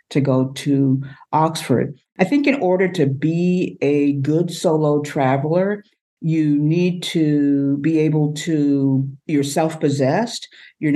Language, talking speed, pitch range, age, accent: English, 125 wpm, 140-165 Hz, 50-69, American